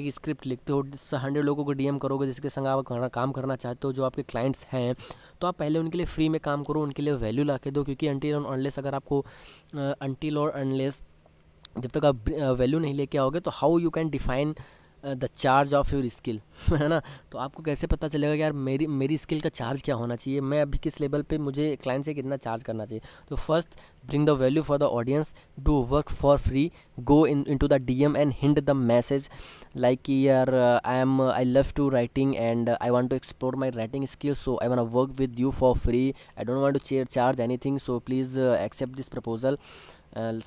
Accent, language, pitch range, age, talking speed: native, Hindi, 130-150 Hz, 20-39, 220 wpm